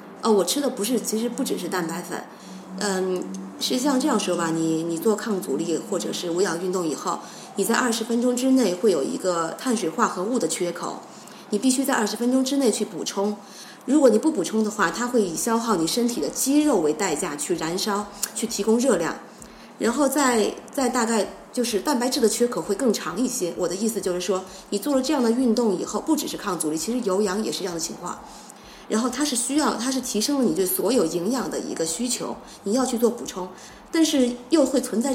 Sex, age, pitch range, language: female, 20-39, 190-260 Hz, Chinese